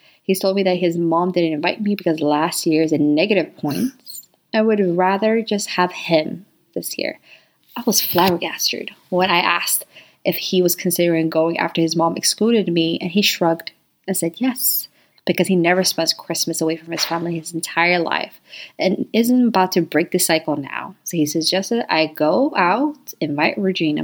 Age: 20-39